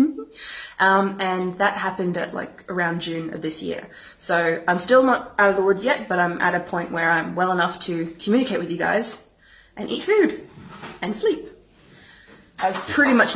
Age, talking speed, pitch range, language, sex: 20-39, 195 wpm, 175-215 Hz, English, female